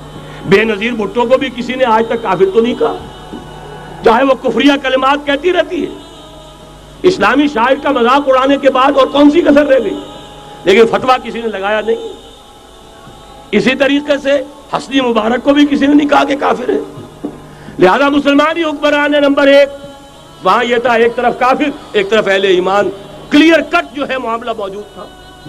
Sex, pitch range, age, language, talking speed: male, 220-295 Hz, 60-79, Urdu, 175 wpm